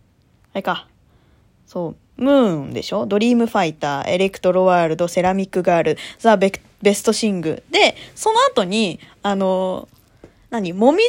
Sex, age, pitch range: female, 20-39, 195-305 Hz